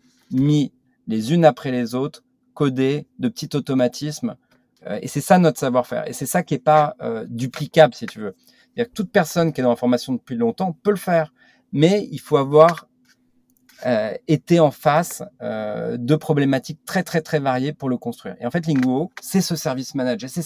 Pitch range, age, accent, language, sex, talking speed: 130-175 Hz, 40-59, French, French, male, 195 wpm